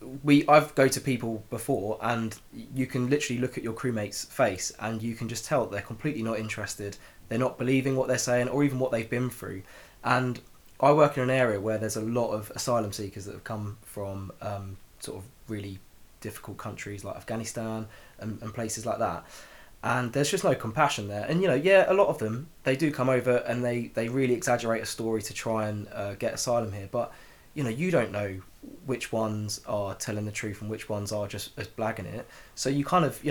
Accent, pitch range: British, 105-125 Hz